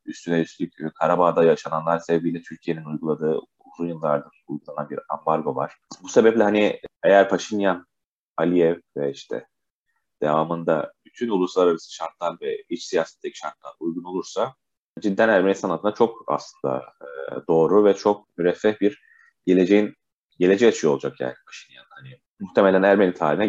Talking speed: 135 wpm